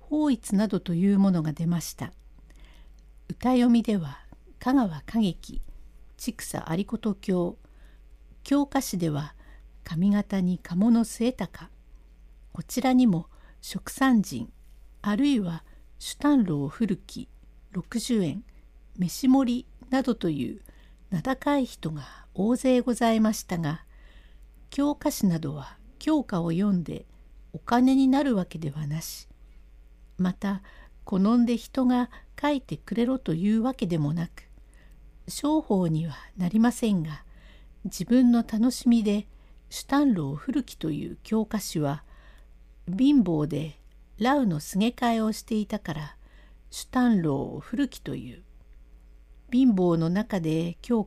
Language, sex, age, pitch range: Japanese, female, 60-79, 150-240 Hz